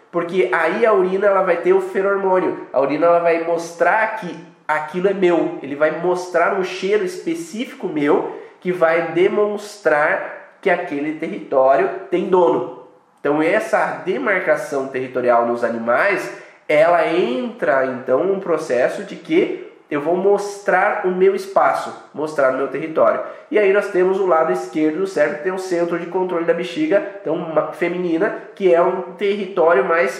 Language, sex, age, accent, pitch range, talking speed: Portuguese, male, 20-39, Brazilian, 155-195 Hz, 155 wpm